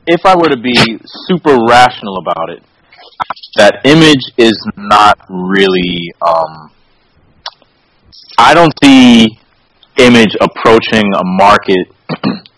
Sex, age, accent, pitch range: male, 30-49, American, 100-135 Hz